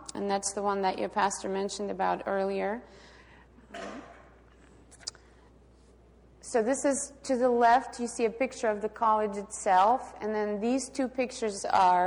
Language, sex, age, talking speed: English, female, 30-49, 150 wpm